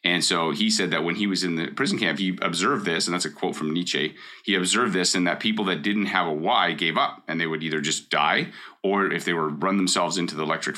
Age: 30-49